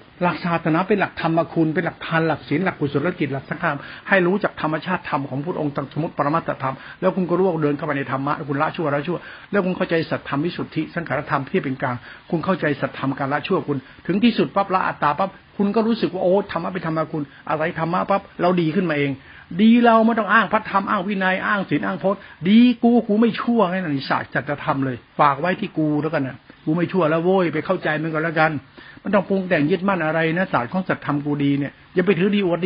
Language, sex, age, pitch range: Thai, male, 60-79, 155-195 Hz